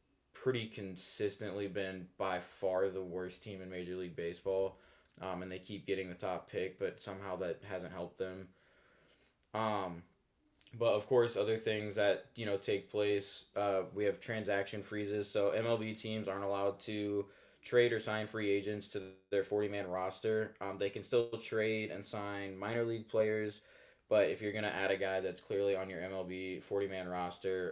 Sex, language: male, English